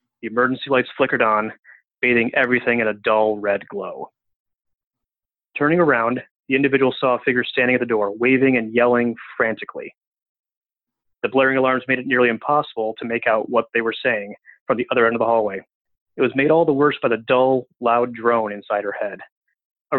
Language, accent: English, American